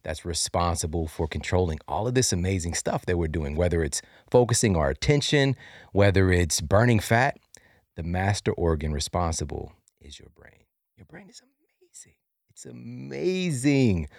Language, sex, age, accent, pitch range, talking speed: English, male, 40-59, American, 85-105 Hz, 145 wpm